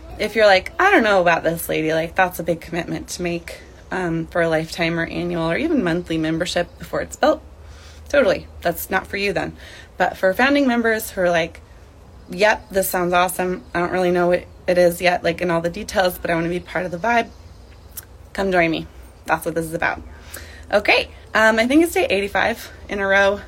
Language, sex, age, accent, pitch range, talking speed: English, female, 20-39, American, 165-210 Hz, 220 wpm